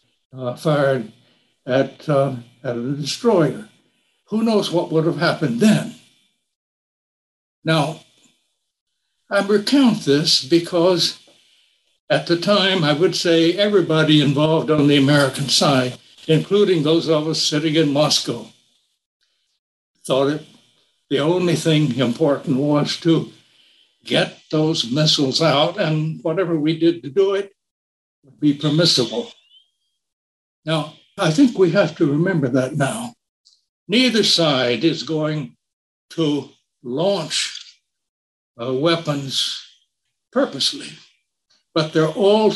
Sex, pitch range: male, 140-180 Hz